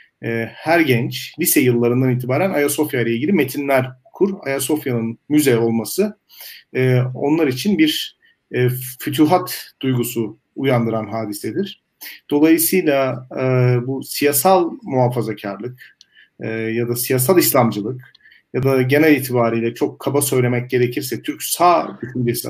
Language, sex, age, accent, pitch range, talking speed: Turkish, male, 40-59, native, 120-150 Hz, 105 wpm